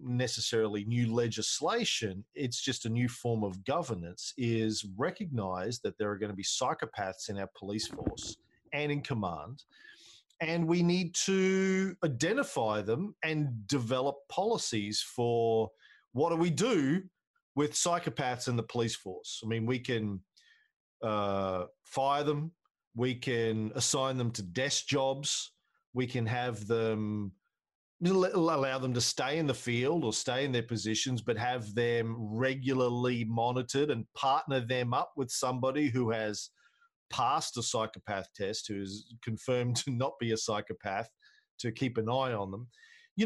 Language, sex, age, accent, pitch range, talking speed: English, male, 40-59, Australian, 110-145 Hz, 150 wpm